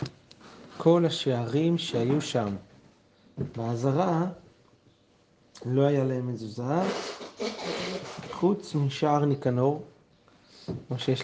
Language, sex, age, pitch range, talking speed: Hebrew, male, 30-49, 120-150 Hz, 75 wpm